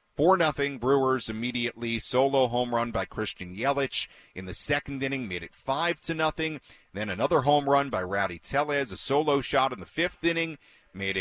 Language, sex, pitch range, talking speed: English, male, 100-150 Hz, 175 wpm